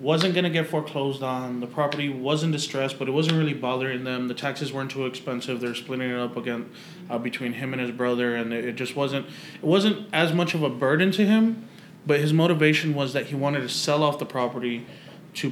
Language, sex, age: English, male, 20-39